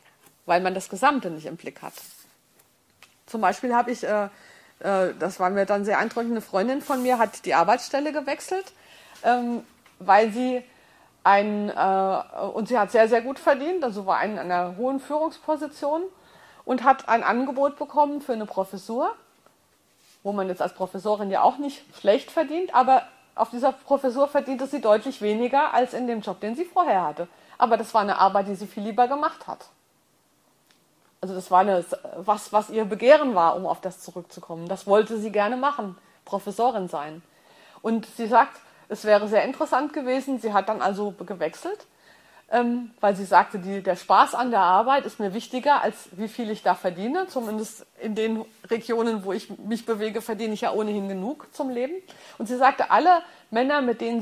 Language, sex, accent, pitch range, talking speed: German, female, German, 195-265 Hz, 175 wpm